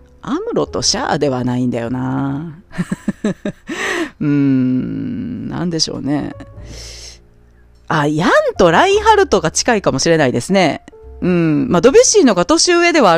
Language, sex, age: Japanese, female, 40-59